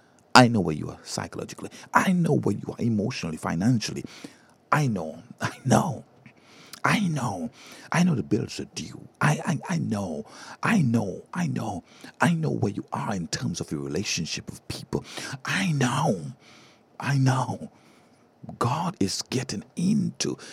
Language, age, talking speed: English, 50-69, 155 wpm